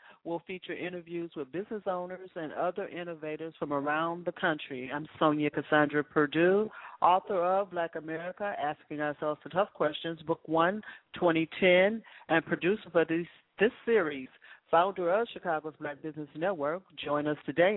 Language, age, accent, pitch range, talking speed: English, 40-59, American, 155-195 Hz, 145 wpm